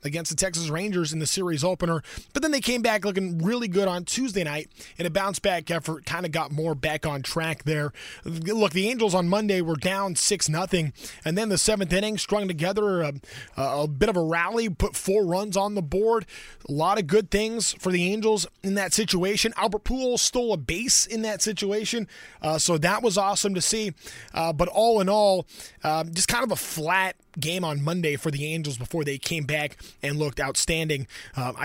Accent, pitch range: American, 155-210 Hz